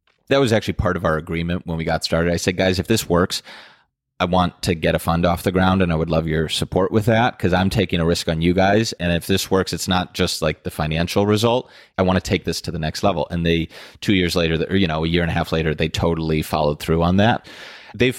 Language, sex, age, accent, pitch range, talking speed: English, male, 30-49, American, 80-95 Hz, 275 wpm